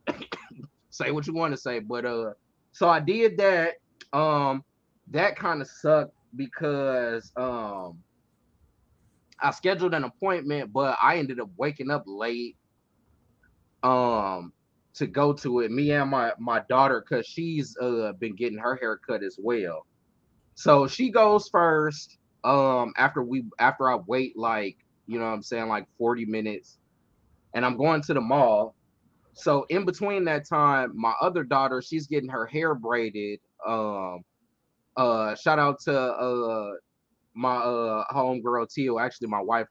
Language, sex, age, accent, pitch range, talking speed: English, male, 20-39, American, 115-150 Hz, 155 wpm